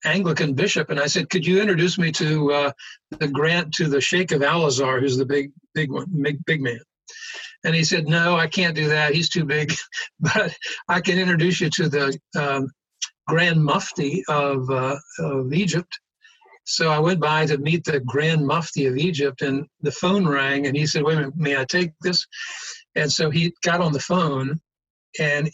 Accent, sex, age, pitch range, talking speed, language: American, male, 60-79, 145-180 Hz, 195 wpm, English